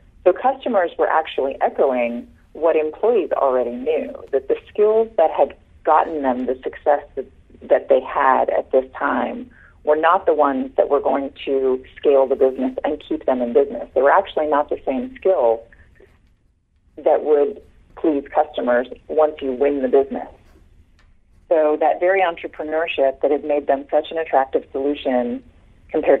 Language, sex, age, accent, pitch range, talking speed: English, female, 40-59, American, 130-190 Hz, 160 wpm